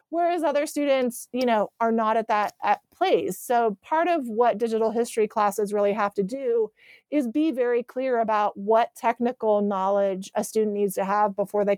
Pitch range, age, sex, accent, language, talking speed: 205-250 Hz, 30-49, female, American, English, 190 wpm